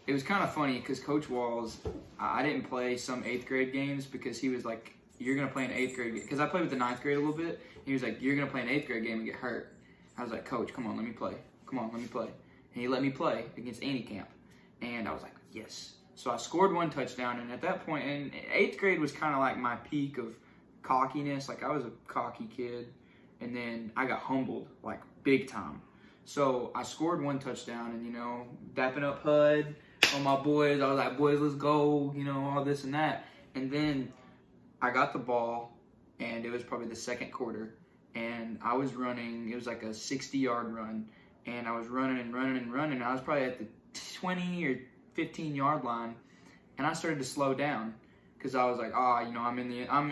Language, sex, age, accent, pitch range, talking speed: English, male, 20-39, American, 120-145 Hz, 235 wpm